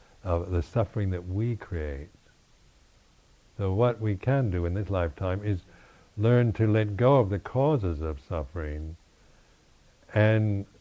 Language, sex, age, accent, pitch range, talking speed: English, male, 60-79, American, 85-105 Hz, 140 wpm